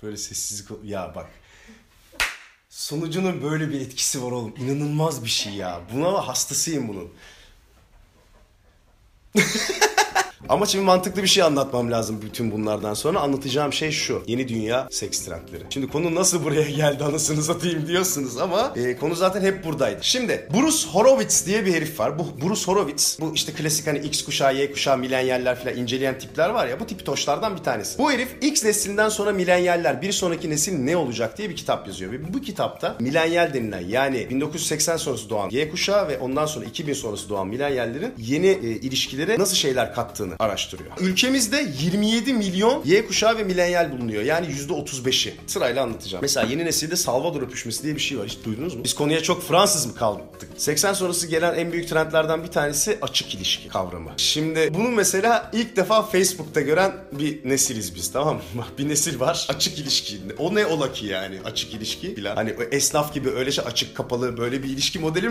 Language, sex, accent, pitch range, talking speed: Turkish, male, native, 125-185 Hz, 180 wpm